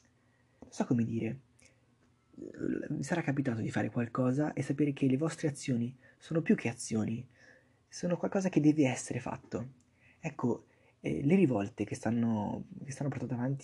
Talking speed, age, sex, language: 145 wpm, 20-39, male, Italian